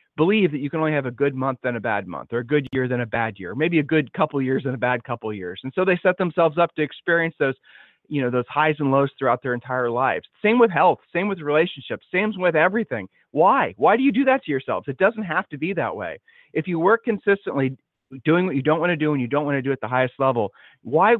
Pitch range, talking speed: 130-180 Hz, 280 wpm